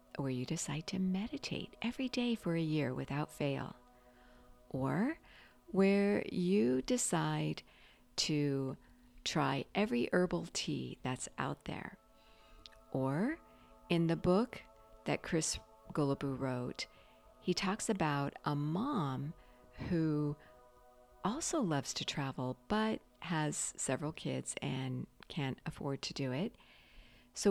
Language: English